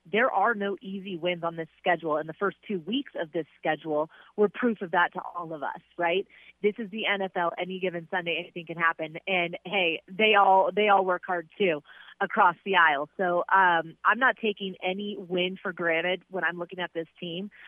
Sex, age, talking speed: female, 30-49, 210 wpm